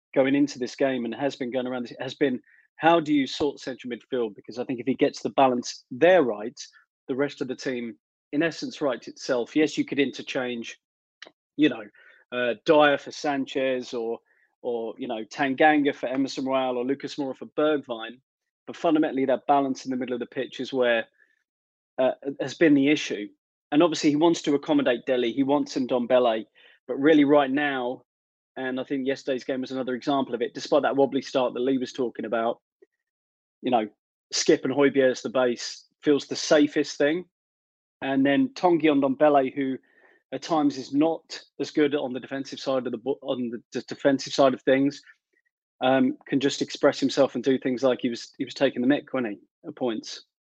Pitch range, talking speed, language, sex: 125-145 Hz, 200 wpm, English, male